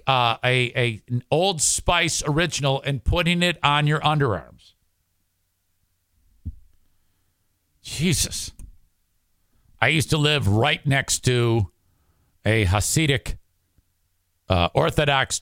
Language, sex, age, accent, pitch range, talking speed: English, male, 50-69, American, 90-150 Hz, 90 wpm